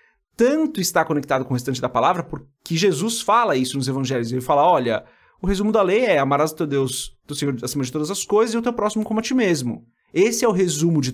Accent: Brazilian